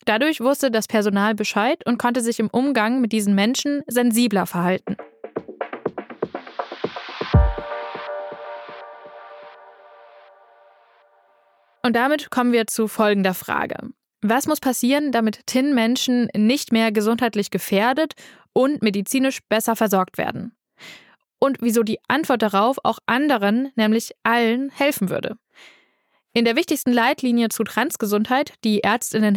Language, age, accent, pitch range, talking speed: German, 10-29, German, 205-250 Hz, 110 wpm